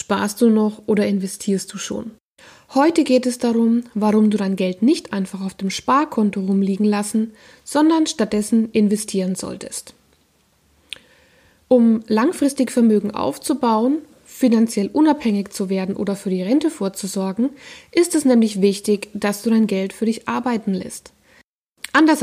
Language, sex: German, female